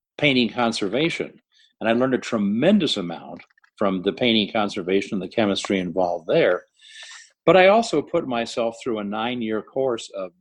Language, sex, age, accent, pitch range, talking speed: English, male, 50-69, American, 100-130 Hz, 155 wpm